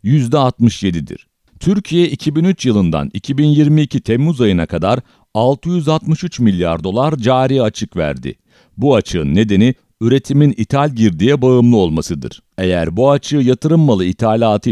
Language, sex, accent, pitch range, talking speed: English, male, Turkish, 100-145 Hz, 115 wpm